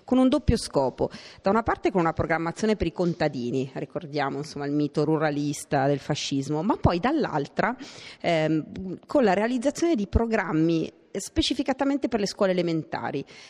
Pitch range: 160-205 Hz